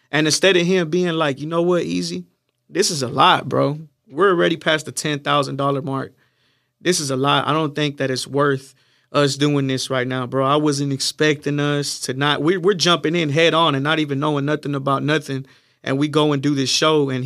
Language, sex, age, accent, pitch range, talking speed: English, male, 30-49, American, 140-165 Hz, 220 wpm